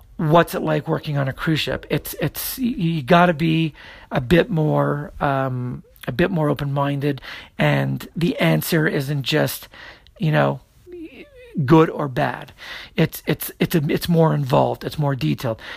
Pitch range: 135-170 Hz